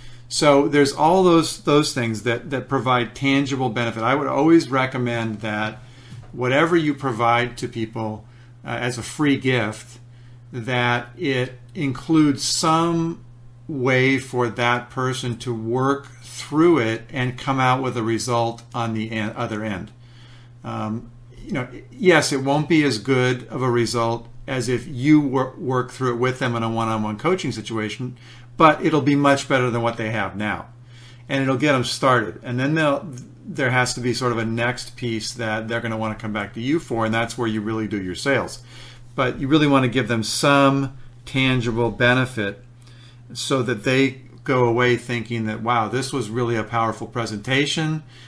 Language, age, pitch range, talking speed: English, 50-69, 115-130 Hz, 180 wpm